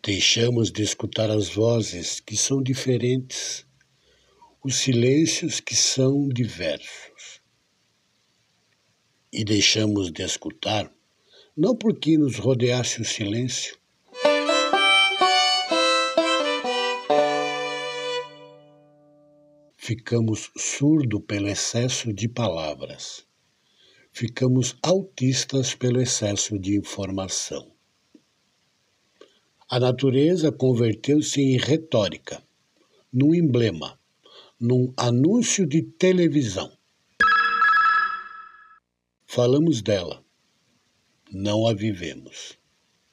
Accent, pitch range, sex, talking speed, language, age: Brazilian, 105-150 Hz, male, 70 wpm, Portuguese, 60-79